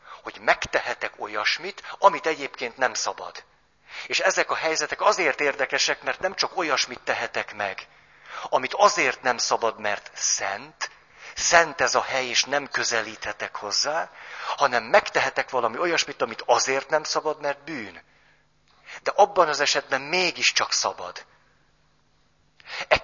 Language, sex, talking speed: Hungarian, male, 130 wpm